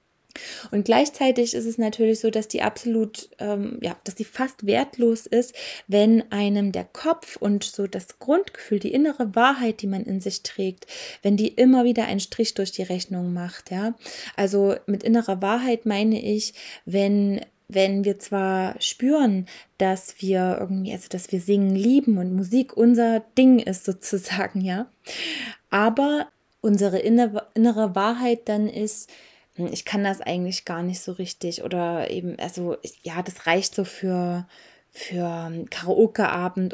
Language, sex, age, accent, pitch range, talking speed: German, female, 20-39, German, 190-230 Hz, 150 wpm